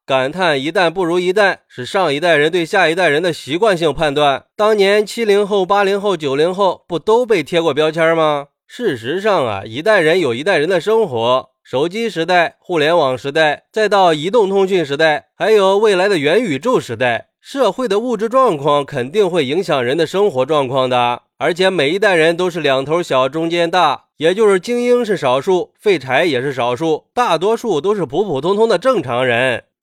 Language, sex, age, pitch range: Chinese, male, 20-39, 145-205 Hz